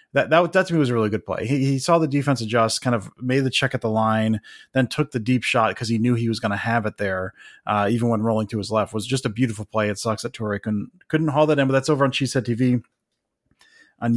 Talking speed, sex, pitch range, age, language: 290 wpm, male, 110-135 Hz, 30-49, English